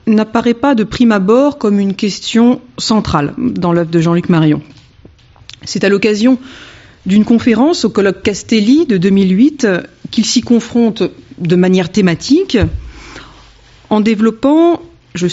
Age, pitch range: 40-59, 180-245 Hz